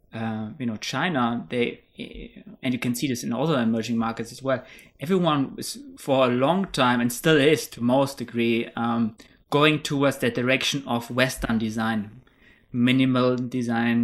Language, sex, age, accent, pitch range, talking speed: English, male, 20-39, German, 115-140 Hz, 165 wpm